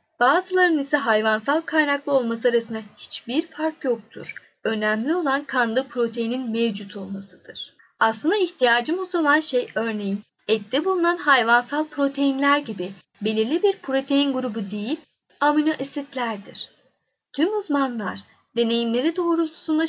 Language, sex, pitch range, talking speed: Turkish, female, 230-305 Hz, 110 wpm